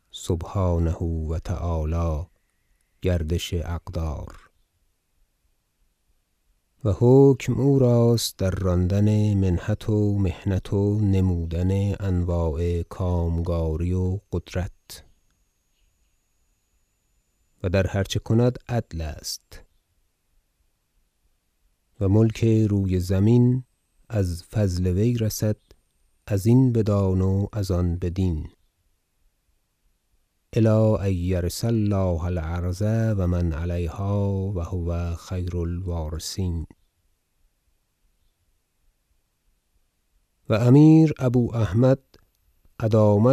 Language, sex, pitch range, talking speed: Persian, male, 85-105 Hz, 80 wpm